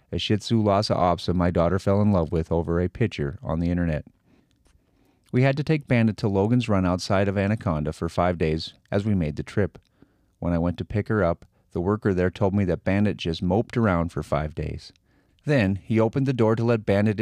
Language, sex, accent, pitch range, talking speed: English, male, American, 90-110 Hz, 225 wpm